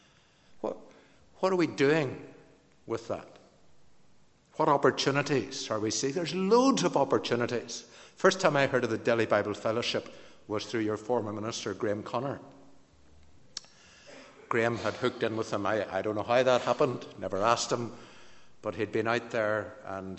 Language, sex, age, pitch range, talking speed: English, male, 60-79, 105-130 Hz, 160 wpm